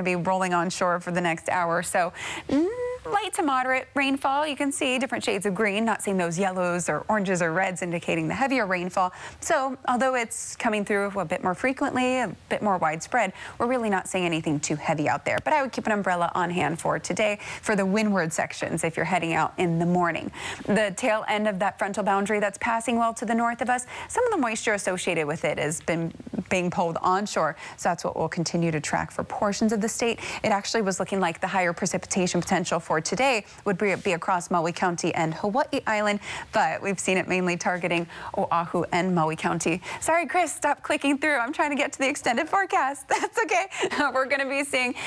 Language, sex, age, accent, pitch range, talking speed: English, female, 30-49, American, 180-250 Hz, 220 wpm